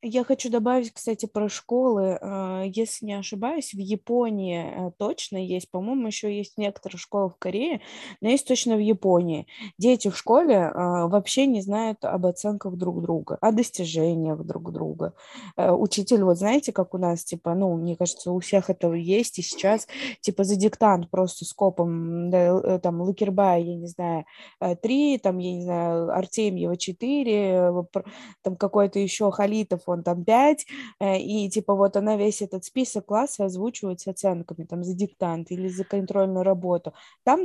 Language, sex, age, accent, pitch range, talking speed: Russian, female, 20-39, native, 180-220 Hz, 160 wpm